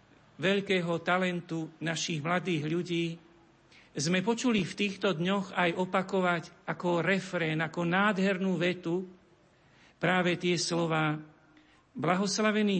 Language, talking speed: Slovak, 100 wpm